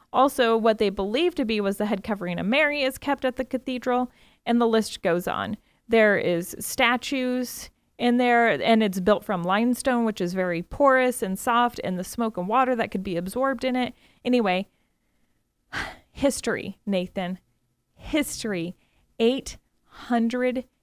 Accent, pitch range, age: American, 215-265 Hz, 30-49